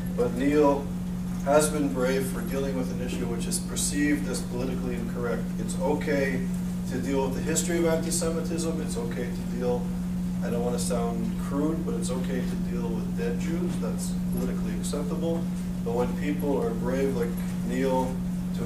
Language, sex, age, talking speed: English, male, 40-59, 175 wpm